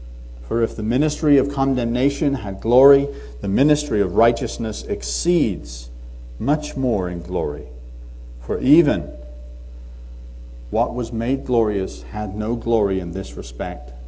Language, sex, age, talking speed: English, male, 50-69, 125 wpm